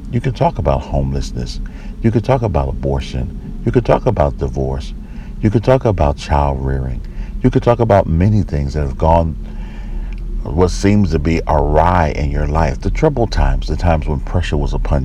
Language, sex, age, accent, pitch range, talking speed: English, male, 60-79, American, 70-95 Hz, 185 wpm